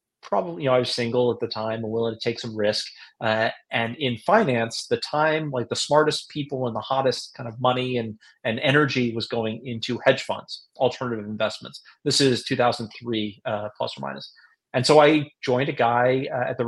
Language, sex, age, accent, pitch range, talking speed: English, male, 30-49, American, 115-130 Hz, 210 wpm